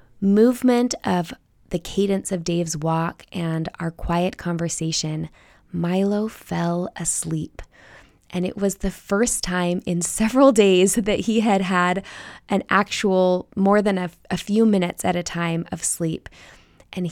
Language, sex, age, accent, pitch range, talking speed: English, female, 20-39, American, 170-195 Hz, 145 wpm